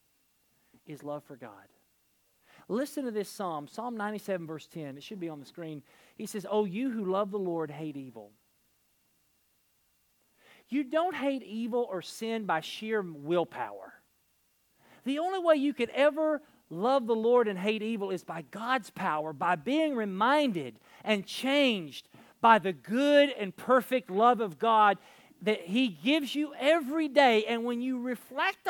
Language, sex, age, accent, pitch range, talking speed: English, male, 40-59, American, 195-290 Hz, 160 wpm